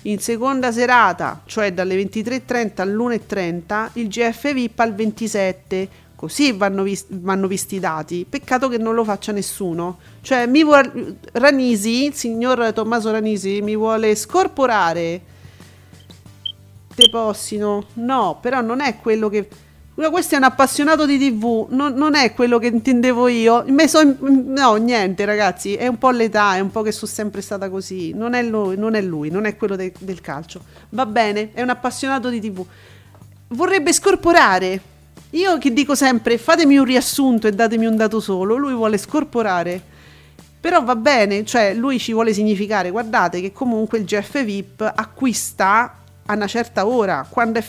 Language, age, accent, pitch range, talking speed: Italian, 40-59, native, 195-255 Hz, 165 wpm